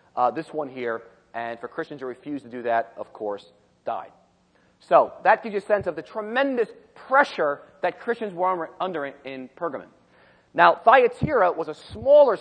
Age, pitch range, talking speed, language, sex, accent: 40-59, 135-185 Hz, 175 wpm, English, male, American